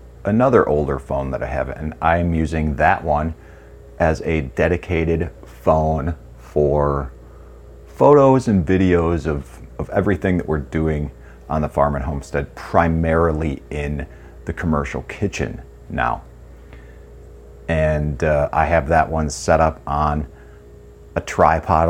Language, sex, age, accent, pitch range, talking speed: English, male, 40-59, American, 70-80 Hz, 130 wpm